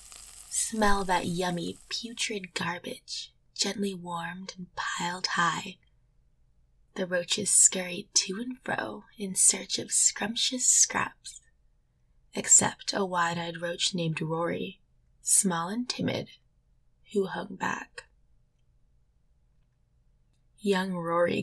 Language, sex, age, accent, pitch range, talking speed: English, female, 10-29, American, 175-205 Hz, 100 wpm